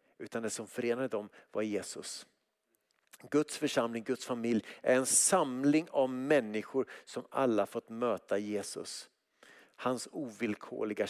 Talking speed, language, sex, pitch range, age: 125 wpm, Swedish, male, 115-150 Hz, 50-69